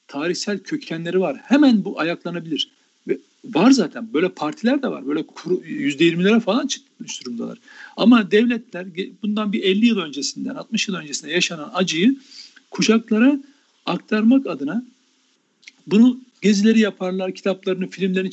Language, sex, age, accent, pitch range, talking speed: Turkish, male, 60-79, native, 185-265 Hz, 130 wpm